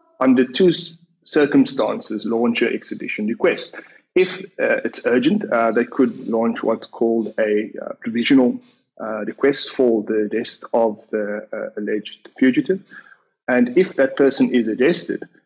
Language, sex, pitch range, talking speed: English, male, 115-160 Hz, 140 wpm